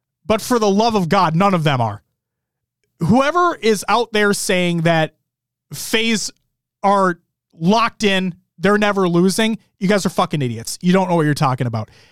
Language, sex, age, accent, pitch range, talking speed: English, male, 30-49, American, 145-210 Hz, 175 wpm